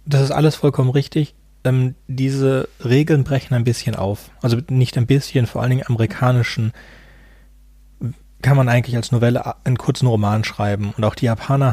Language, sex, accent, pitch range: German, male, German, 110-135 Hz